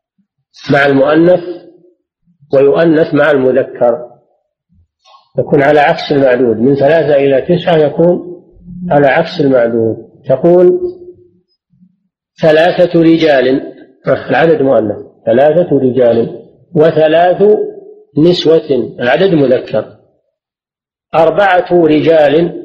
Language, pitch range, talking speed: Arabic, 135-175 Hz, 80 wpm